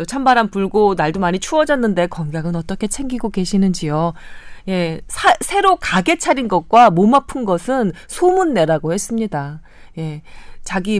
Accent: native